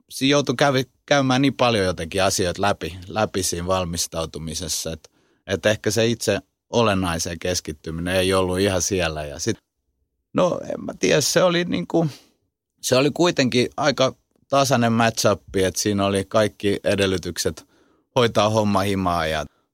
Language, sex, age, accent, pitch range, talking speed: Finnish, male, 30-49, native, 90-110 Hz, 135 wpm